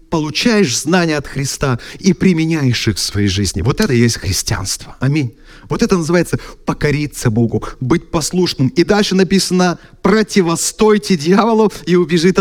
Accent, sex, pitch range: native, male, 155-210 Hz